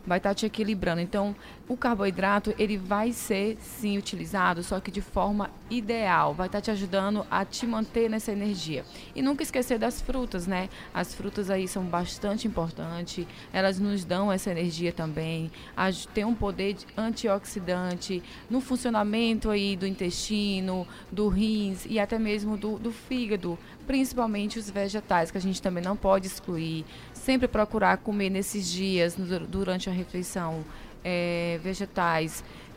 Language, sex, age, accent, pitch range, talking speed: Portuguese, female, 20-39, Brazilian, 185-215 Hz, 155 wpm